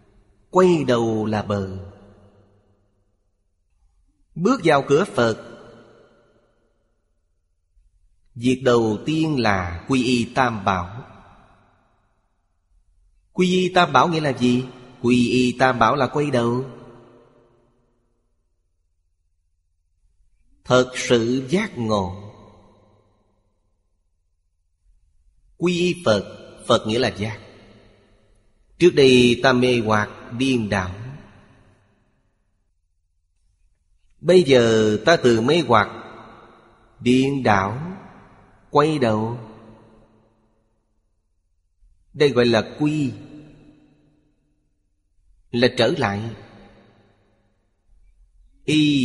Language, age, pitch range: Vietnamese, 30-49, 95-120 Hz